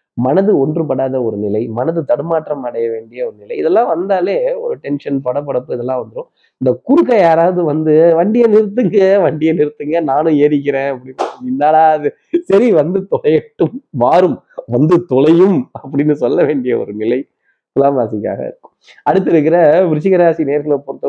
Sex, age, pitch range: male, 20-39, 135-175 Hz